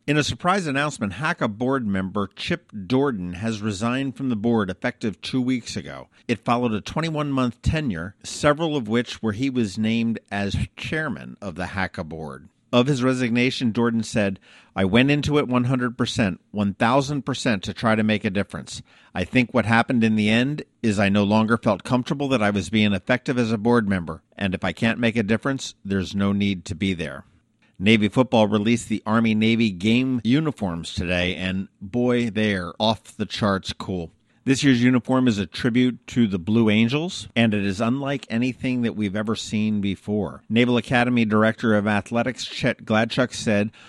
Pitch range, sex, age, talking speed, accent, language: 100-125 Hz, male, 50-69, 180 wpm, American, English